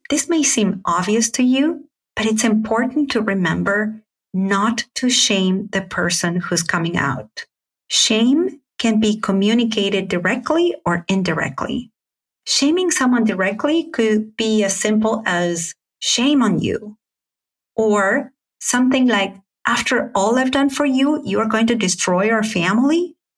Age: 30-49